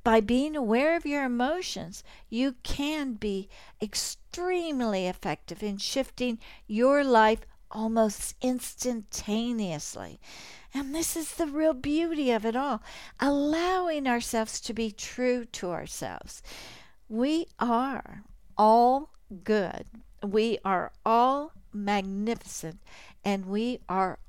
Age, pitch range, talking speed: 60-79, 215-295 Hz, 110 wpm